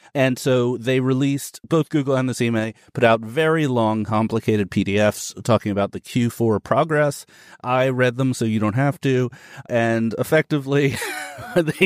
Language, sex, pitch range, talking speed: English, male, 105-140 Hz, 160 wpm